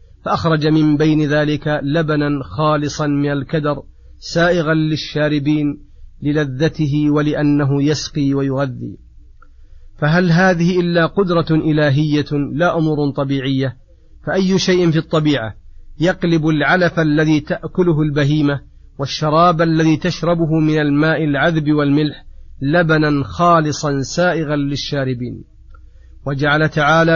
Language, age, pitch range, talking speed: Arabic, 40-59, 145-160 Hz, 95 wpm